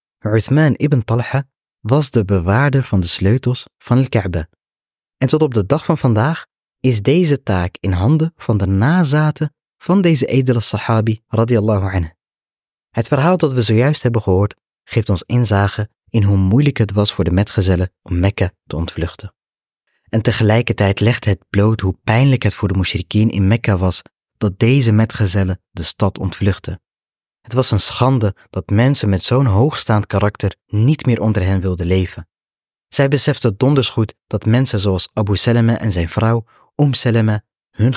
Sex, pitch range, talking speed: male, 95-125 Hz, 165 wpm